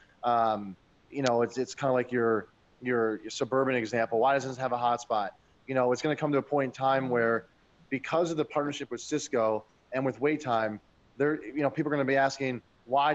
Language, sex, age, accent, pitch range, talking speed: English, male, 30-49, American, 120-140 Hz, 220 wpm